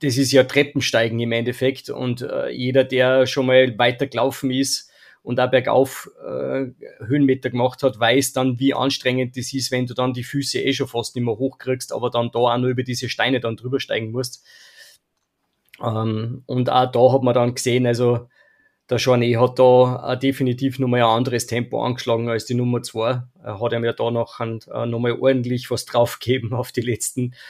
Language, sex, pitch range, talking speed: German, male, 120-135 Hz, 190 wpm